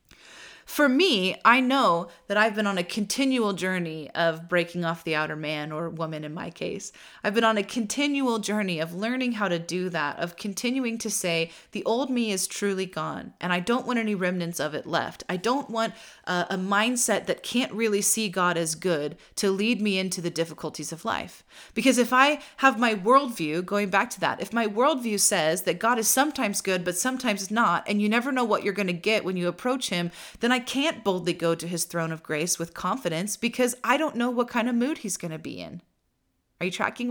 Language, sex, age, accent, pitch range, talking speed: English, female, 30-49, American, 175-240 Hz, 225 wpm